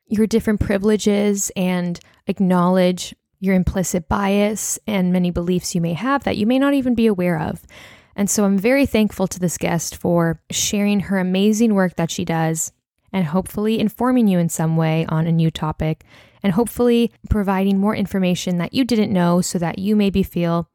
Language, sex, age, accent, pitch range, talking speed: English, female, 10-29, American, 175-215 Hz, 180 wpm